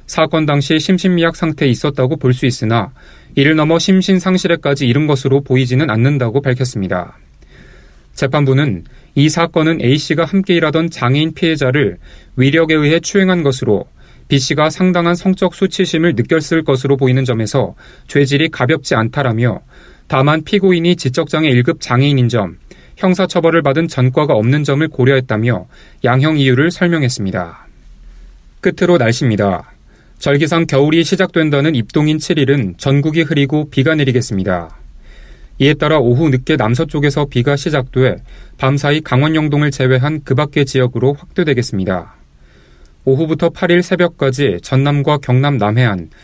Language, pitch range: Korean, 125-160 Hz